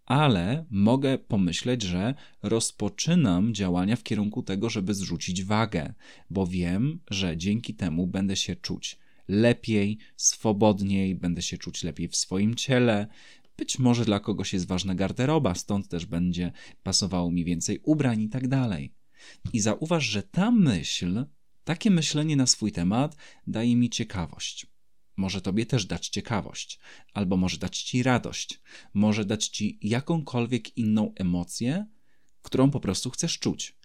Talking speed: 140 wpm